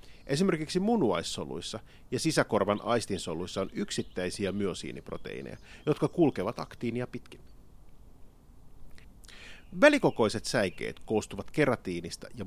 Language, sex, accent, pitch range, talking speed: Finnish, male, native, 105-145 Hz, 80 wpm